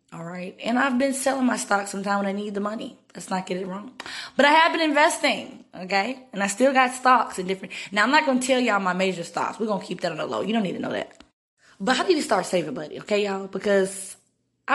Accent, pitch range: American, 180-245 Hz